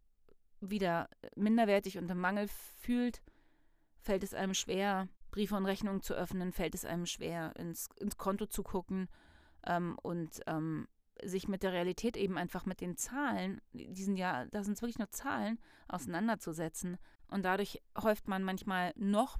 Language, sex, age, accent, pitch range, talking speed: German, female, 30-49, German, 180-215 Hz, 155 wpm